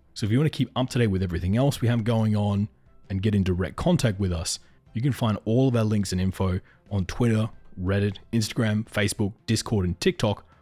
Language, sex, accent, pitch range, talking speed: English, male, Australian, 95-115 Hz, 225 wpm